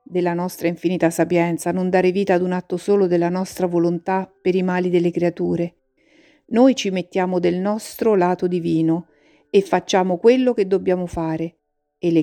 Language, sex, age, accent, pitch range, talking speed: Italian, female, 50-69, native, 170-215 Hz, 165 wpm